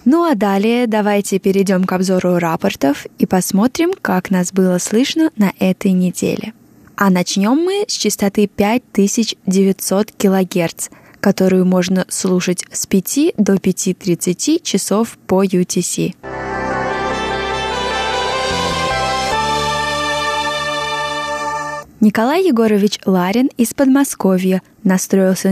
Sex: female